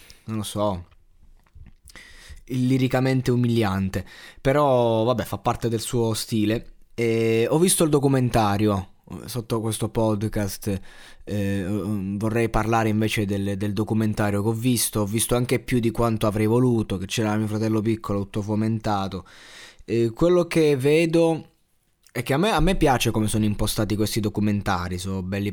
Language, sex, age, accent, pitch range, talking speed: Italian, male, 20-39, native, 105-125 Hz, 150 wpm